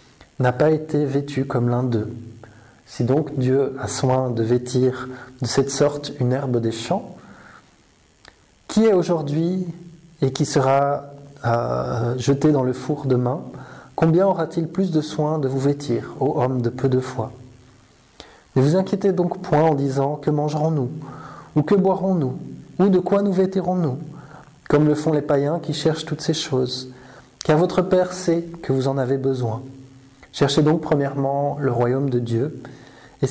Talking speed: 165 wpm